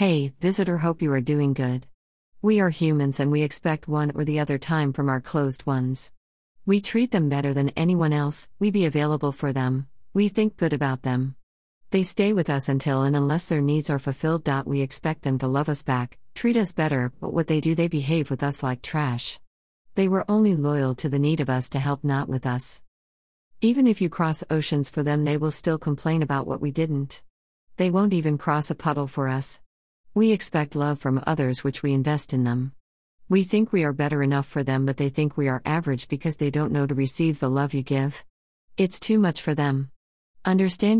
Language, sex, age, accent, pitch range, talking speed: English, female, 50-69, American, 135-160 Hz, 215 wpm